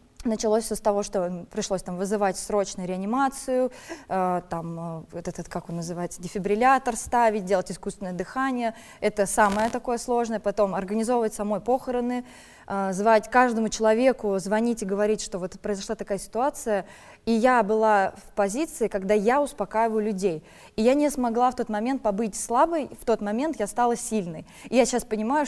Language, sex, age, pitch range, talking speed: Russian, female, 20-39, 200-245 Hz, 165 wpm